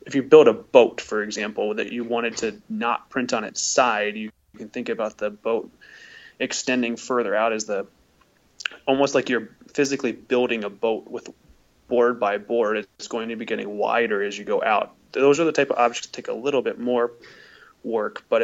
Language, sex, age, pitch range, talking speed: English, male, 30-49, 115-140 Hz, 200 wpm